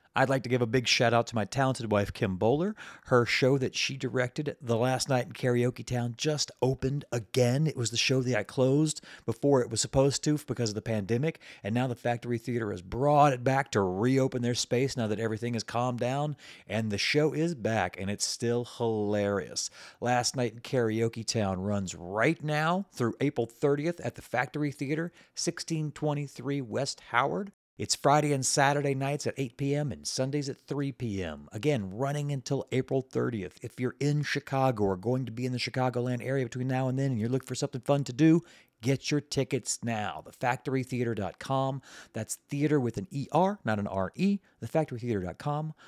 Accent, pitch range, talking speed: American, 115-140 Hz, 190 wpm